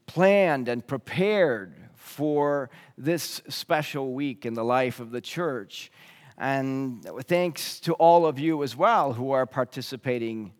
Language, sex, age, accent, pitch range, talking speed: English, male, 40-59, American, 125-180 Hz, 135 wpm